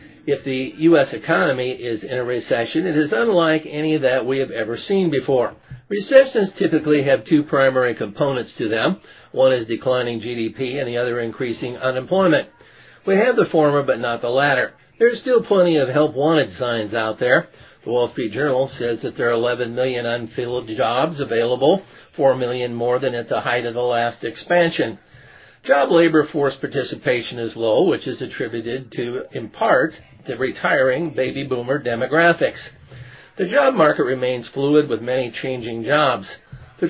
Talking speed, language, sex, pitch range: 165 wpm, English, male, 120-155 Hz